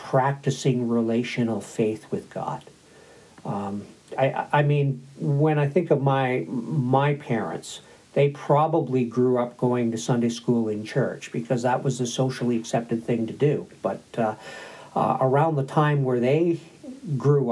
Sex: male